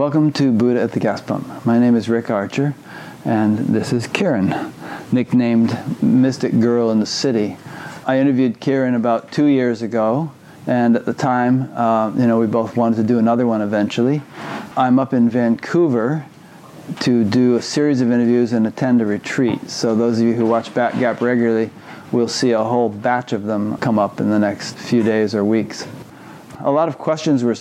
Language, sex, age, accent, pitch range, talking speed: English, male, 40-59, American, 115-130 Hz, 190 wpm